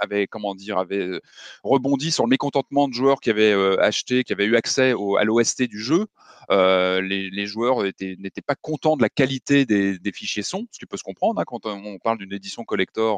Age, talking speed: 30-49, 225 wpm